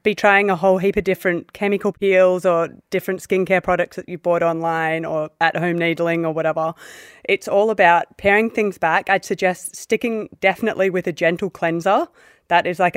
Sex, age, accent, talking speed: female, 20-39, Australian, 180 wpm